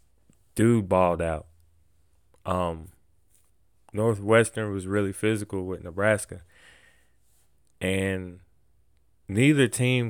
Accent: American